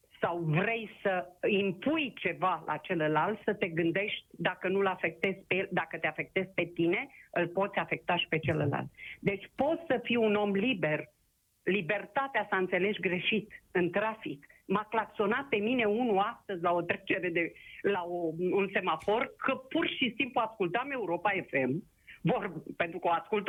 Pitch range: 180-240 Hz